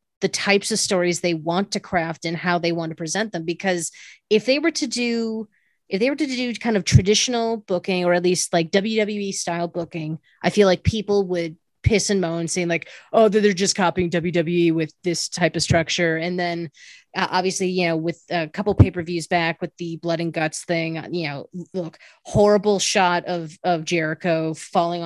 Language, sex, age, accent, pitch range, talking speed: English, female, 20-39, American, 170-215 Hz, 200 wpm